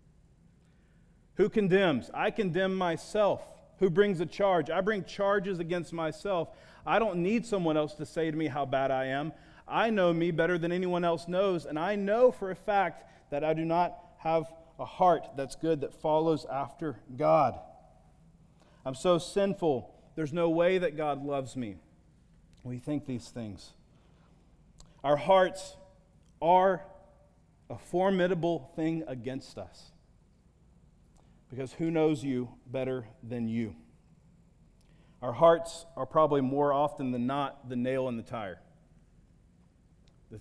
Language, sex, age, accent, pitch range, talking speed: English, male, 40-59, American, 120-170 Hz, 145 wpm